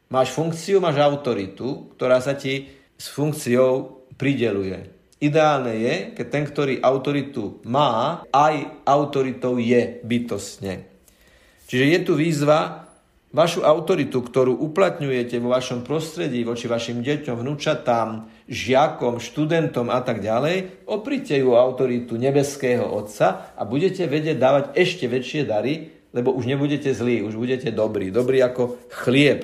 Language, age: Slovak, 50-69